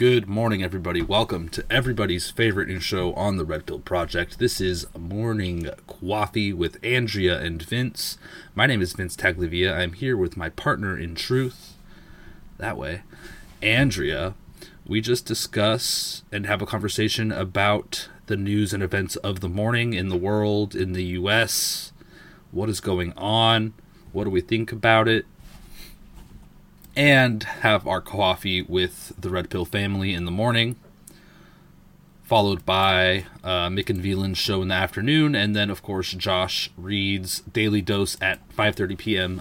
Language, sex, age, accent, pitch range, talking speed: English, male, 30-49, American, 90-110 Hz, 150 wpm